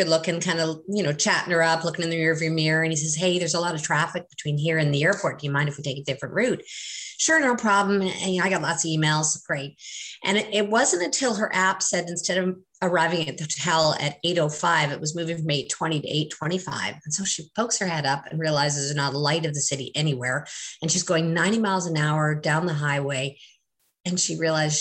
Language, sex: English, female